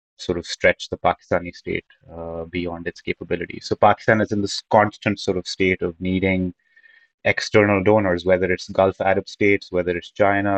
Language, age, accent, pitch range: English, 30-49, Indian, 90-100 Hz